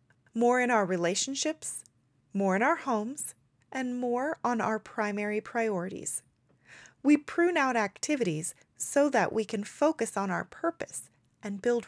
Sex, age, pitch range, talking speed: female, 30-49, 175-250 Hz, 140 wpm